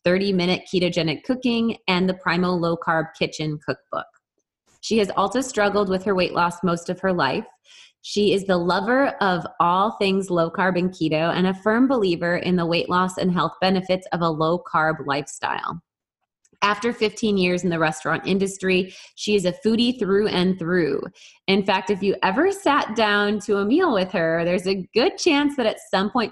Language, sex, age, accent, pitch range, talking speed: English, female, 20-39, American, 180-225 Hz, 180 wpm